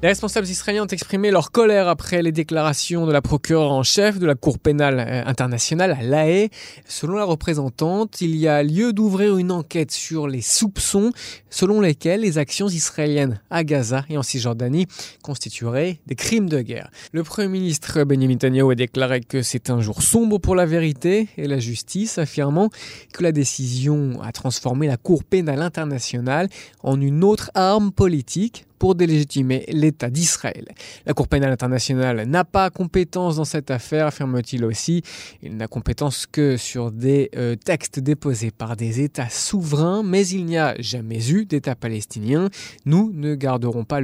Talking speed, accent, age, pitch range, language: 170 wpm, French, 20-39, 130-175 Hz, French